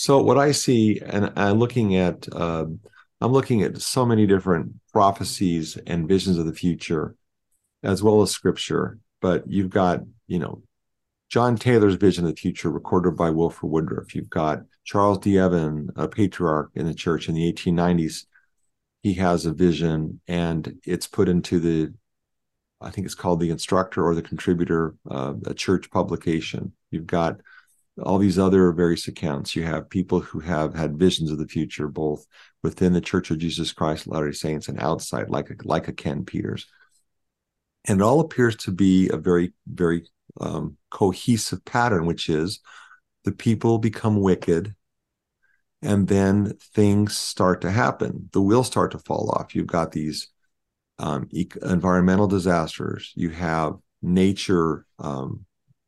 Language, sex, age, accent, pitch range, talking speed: English, male, 50-69, American, 80-100 Hz, 160 wpm